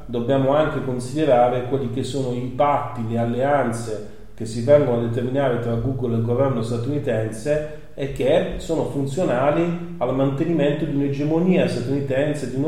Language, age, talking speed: Italian, 30-49, 150 wpm